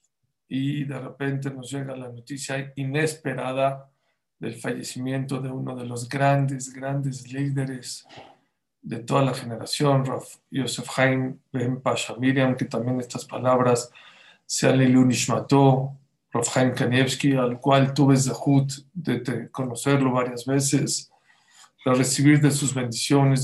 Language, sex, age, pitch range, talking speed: English, male, 50-69, 125-140 Hz, 125 wpm